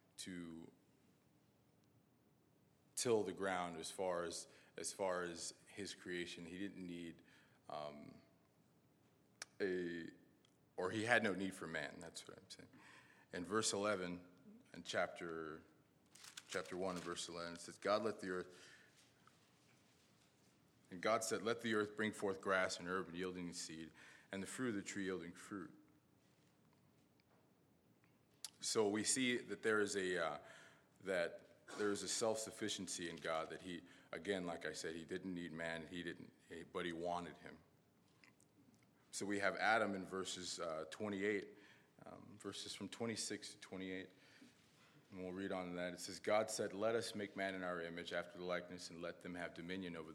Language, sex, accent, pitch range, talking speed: English, male, American, 85-100 Hz, 165 wpm